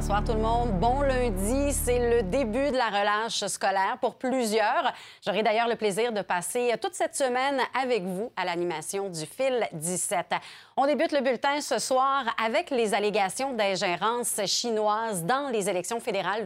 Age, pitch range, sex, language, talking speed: 30-49, 195-260 Hz, female, French, 170 wpm